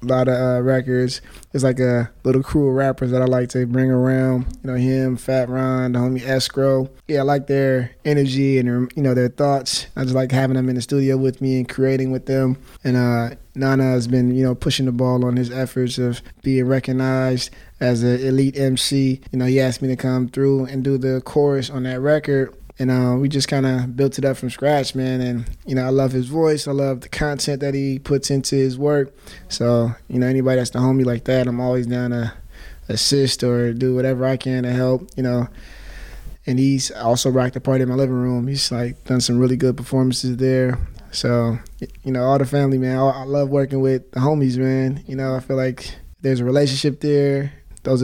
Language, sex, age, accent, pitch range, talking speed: English, male, 20-39, American, 125-135 Hz, 225 wpm